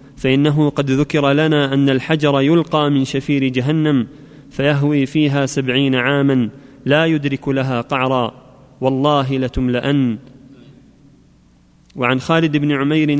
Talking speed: 110 wpm